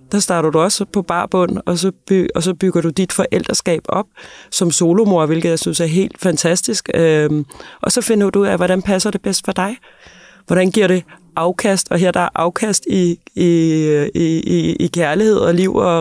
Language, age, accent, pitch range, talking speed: Danish, 30-49, native, 155-190 Hz, 190 wpm